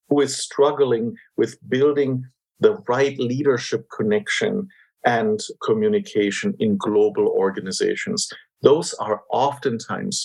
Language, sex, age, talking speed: English, male, 50-69, 100 wpm